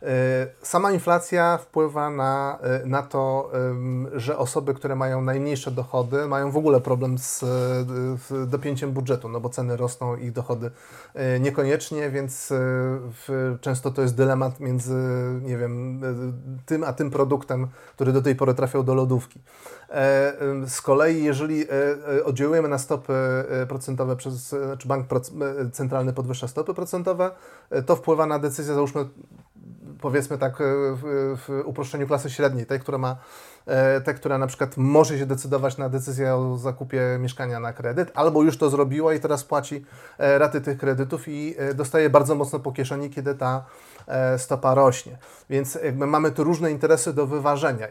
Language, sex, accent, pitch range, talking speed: Polish, male, native, 130-145 Hz, 140 wpm